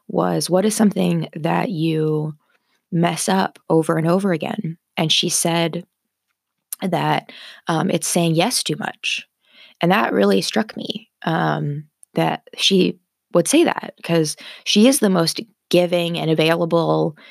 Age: 20-39